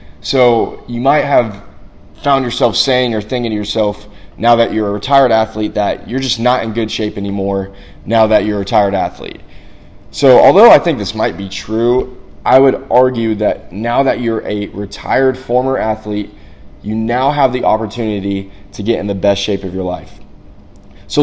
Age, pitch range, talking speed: 20-39, 100-115 Hz, 185 wpm